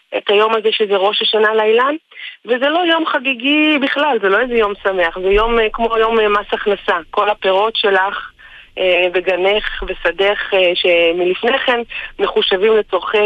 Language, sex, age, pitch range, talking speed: Hebrew, female, 30-49, 175-215 Hz, 145 wpm